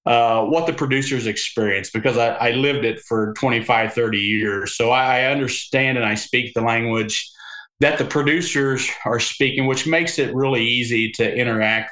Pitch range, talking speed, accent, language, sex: 105-125 Hz, 175 wpm, American, English, male